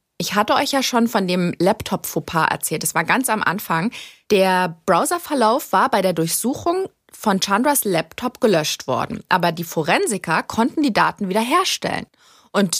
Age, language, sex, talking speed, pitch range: 30-49, German, female, 155 wpm, 185-240 Hz